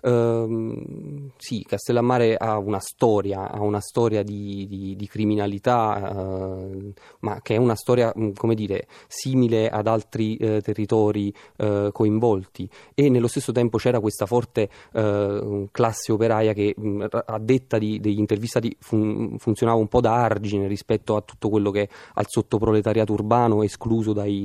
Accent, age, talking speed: native, 30-49, 130 wpm